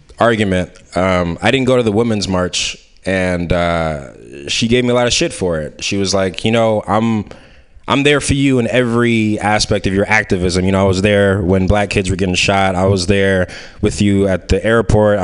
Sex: male